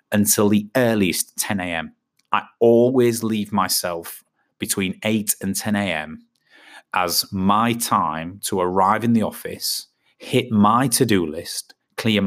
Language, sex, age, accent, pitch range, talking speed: English, male, 30-49, British, 95-115 Hz, 130 wpm